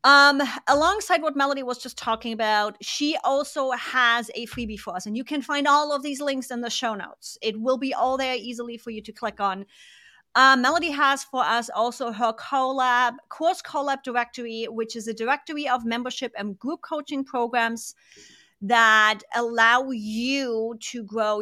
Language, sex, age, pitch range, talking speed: English, female, 30-49, 215-270 Hz, 180 wpm